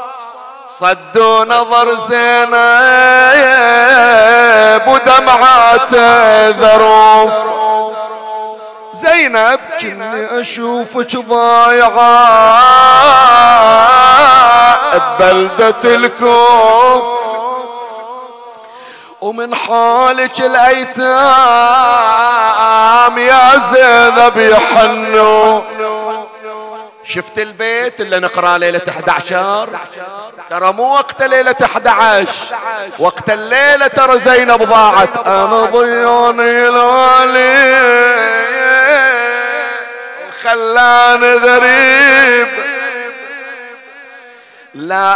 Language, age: Arabic, 40-59